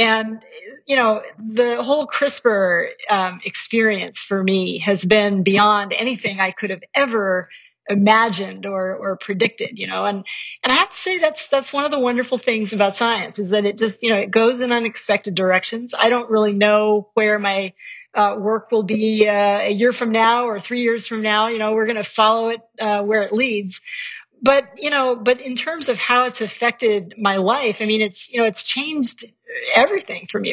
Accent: American